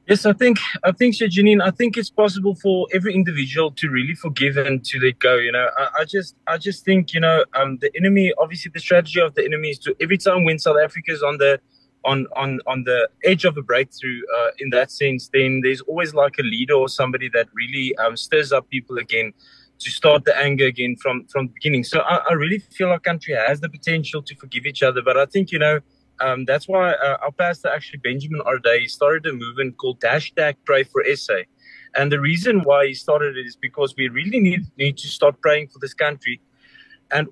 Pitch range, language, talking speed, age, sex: 135-180 Hz, English, 225 wpm, 20-39, male